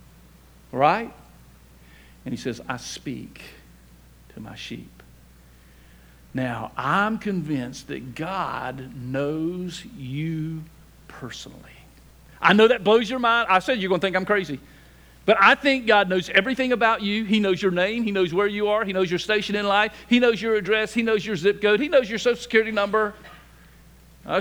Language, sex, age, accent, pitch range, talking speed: English, male, 50-69, American, 155-230 Hz, 170 wpm